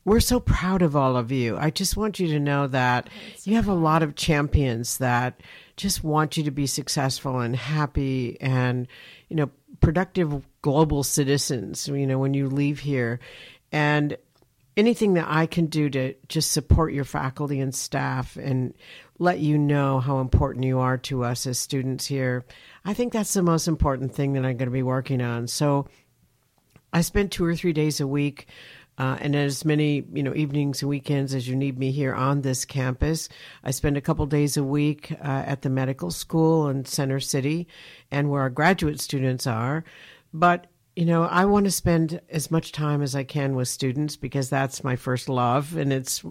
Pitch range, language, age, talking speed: 130-155 Hz, English, 60-79, 195 wpm